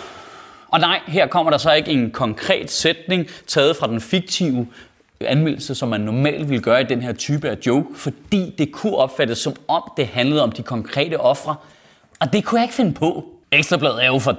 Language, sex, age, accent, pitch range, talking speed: Danish, male, 30-49, native, 125-180 Hz, 205 wpm